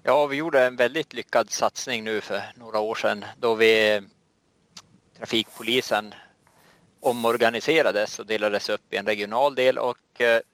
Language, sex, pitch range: Swedish, male, 110-130 Hz